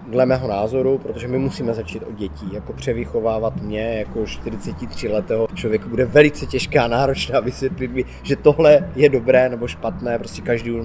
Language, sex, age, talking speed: Czech, male, 20-39, 170 wpm